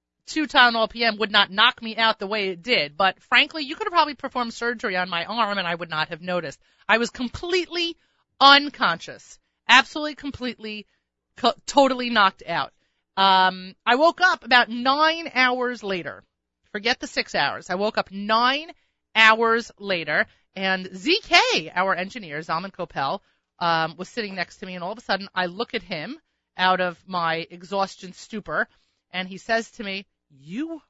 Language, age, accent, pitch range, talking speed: English, 30-49, American, 165-235 Hz, 175 wpm